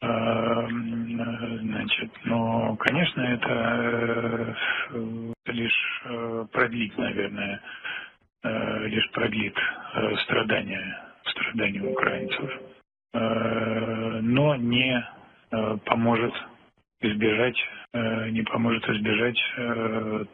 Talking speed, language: 60 wpm, Greek